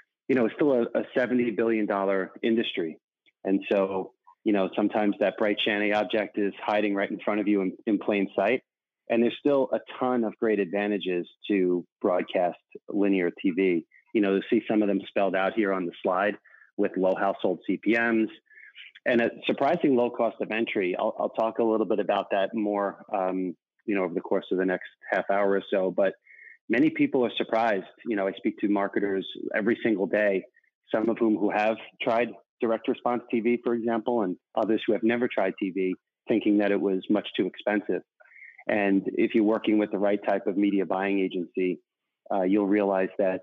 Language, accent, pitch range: English, American, 95-115 Hz